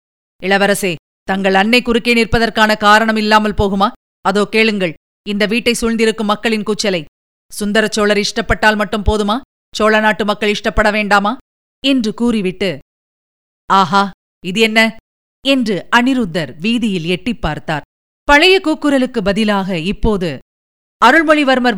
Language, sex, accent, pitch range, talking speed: Tamil, female, native, 195-255 Hz, 105 wpm